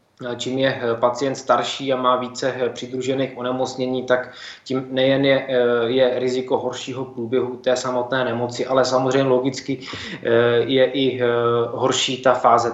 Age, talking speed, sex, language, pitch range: 20-39, 130 wpm, male, Czech, 120-140 Hz